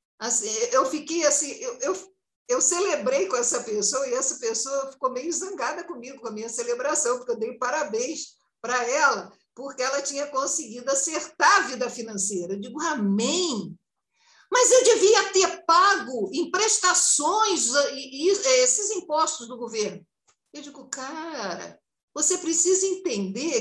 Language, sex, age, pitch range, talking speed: Portuguese, female, 60-79, 250-345 Hz, 135 wpm